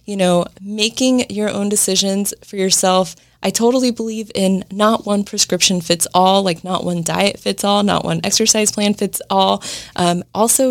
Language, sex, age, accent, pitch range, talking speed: English, female, 20-39, American, 180-215 Hz, 175 wpm